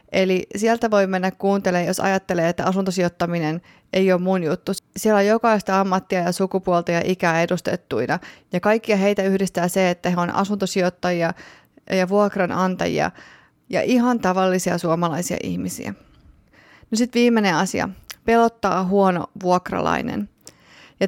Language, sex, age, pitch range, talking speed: Finnish, female, 30-49, 180-210 Hz, 130 wpm